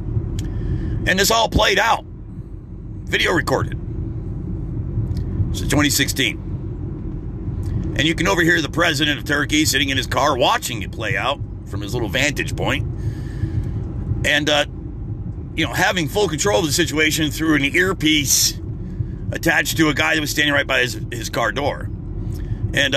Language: English